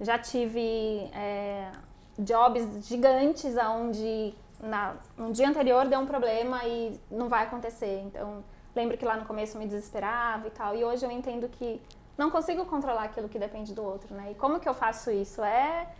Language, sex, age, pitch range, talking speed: Portuguese, female, 20-39, 220-255 Hz, 185 wpm